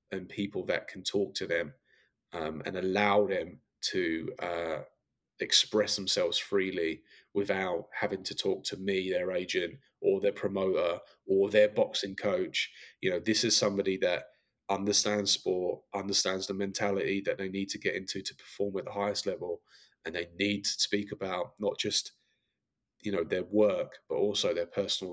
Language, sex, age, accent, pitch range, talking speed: English, male, 20-39, British, 95-110 Hz, 165 wpm